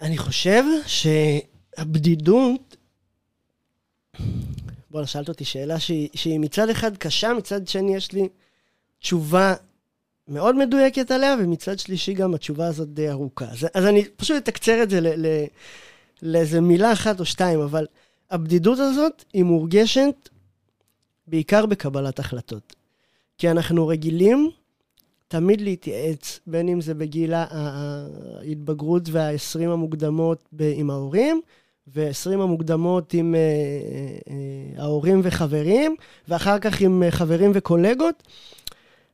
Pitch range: 150-200 Hz